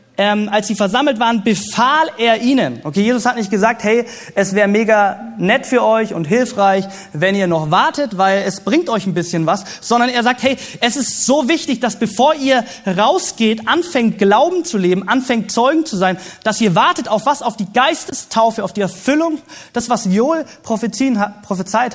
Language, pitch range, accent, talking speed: German, 195-245 Hz, German, 185 wpm